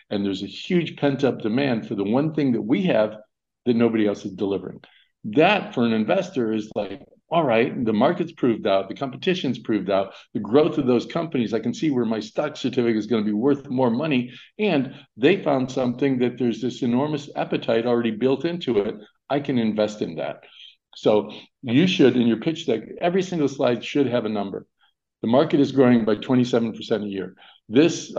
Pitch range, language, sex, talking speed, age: 110-135 Hz, English, male, 200 wpm, 50-69